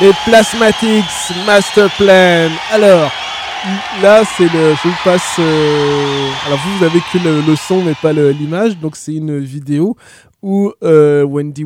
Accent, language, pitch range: French, French, 135-175 Hz